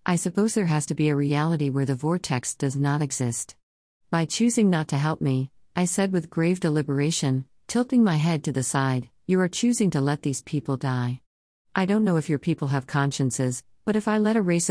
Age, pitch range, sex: 50-69, 130-175 Hz, female